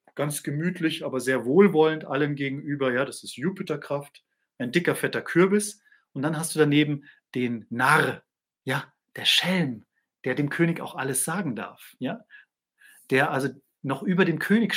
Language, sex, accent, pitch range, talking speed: German, male, German, 130-185 Hz, 160 wpm